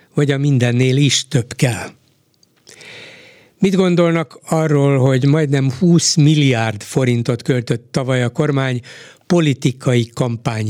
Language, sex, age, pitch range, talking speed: Hungarian, male, 60-79, 125-155 Hz, 110 wpm